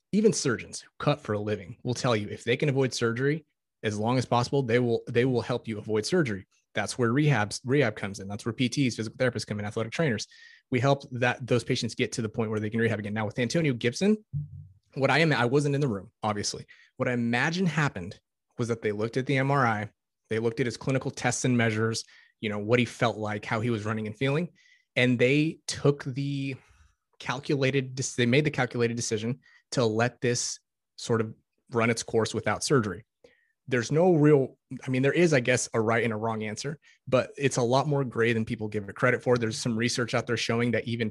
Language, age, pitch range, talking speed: English, 30-49, 110-135 Hz, 225 wpm